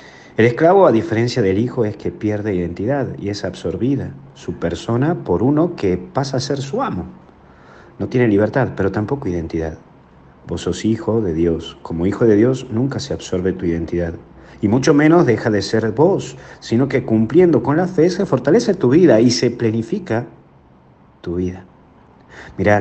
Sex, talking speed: male, 175 wpm